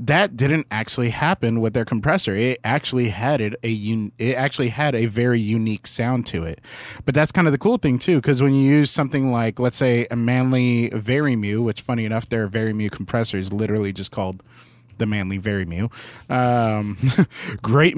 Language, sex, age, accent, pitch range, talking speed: English, male, 20-39, American, 110-140 Hz, 195 wpm